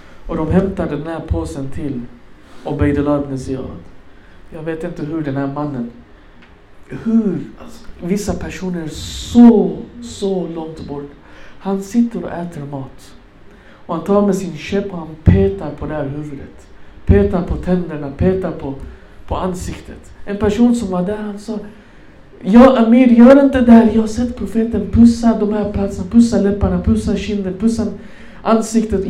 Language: Swedish